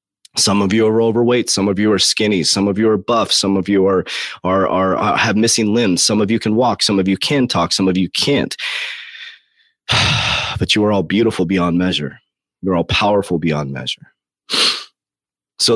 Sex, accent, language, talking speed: male, American, English, 195 wpm